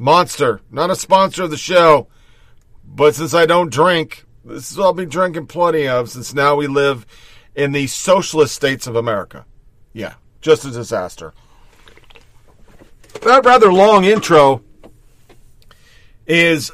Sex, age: male, 50-69